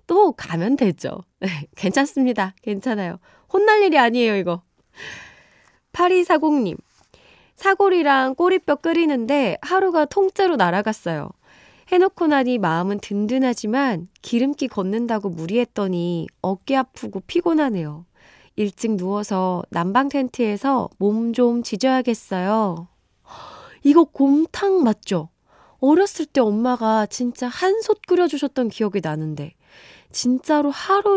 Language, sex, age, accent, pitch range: Korean, female, 20-39, native, 195-310 Hz